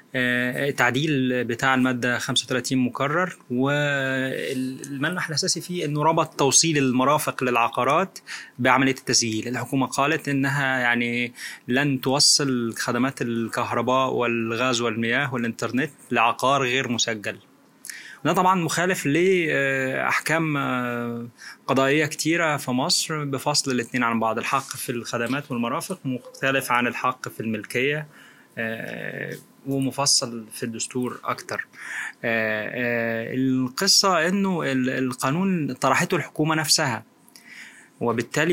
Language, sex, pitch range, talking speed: Arabic, male, 125-160 Hz, 95 wpm